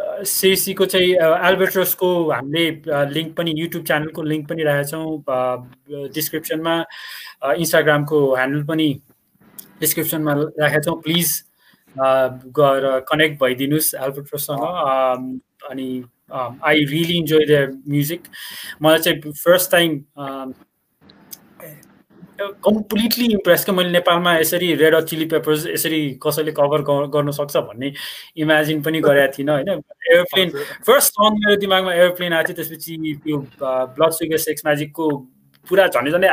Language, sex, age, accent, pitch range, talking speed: English, male, 20-39, Indian, 140-170 Hz, 110 wpm